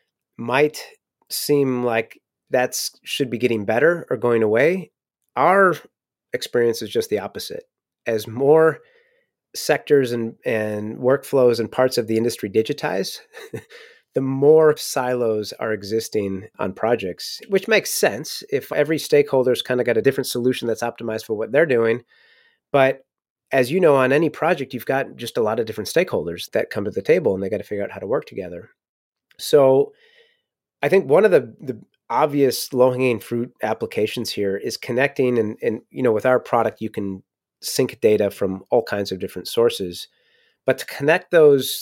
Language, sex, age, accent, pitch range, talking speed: English, male, 30-49, American, 110-150 Hz, 170 wpm